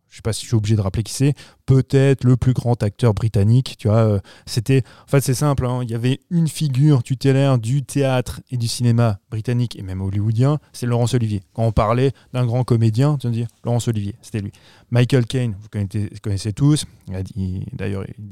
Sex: male